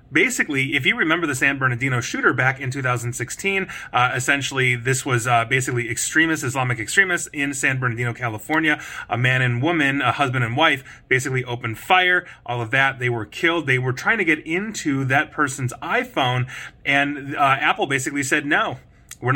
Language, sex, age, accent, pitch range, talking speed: English, male, 30-49, American, 125-155 Hz, 175 wpm